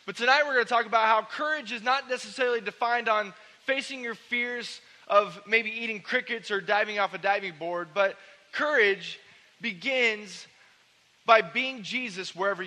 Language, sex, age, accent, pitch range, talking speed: English, male, 20-39, American, 175-215 Hz, 160 wpm